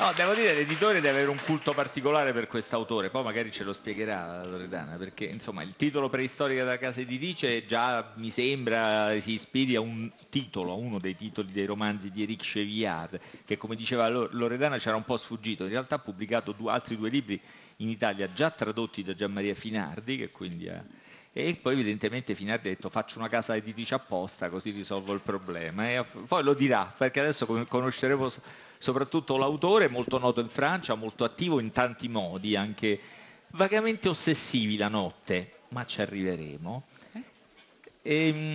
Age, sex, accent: 40-59, male, native